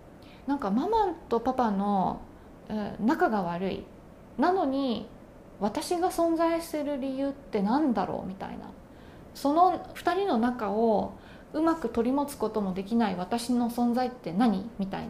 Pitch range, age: 220-350 Hz, 20-39